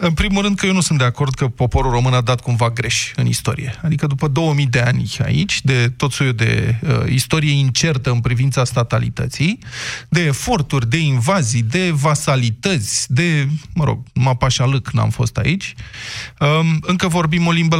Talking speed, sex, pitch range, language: 175 wpm, male, 120-160 Hz, Romanian